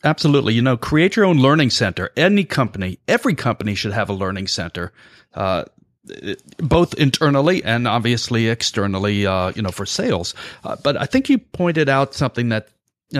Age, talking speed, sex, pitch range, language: 40-59, 175 wpm, male, 110-150 Hz, English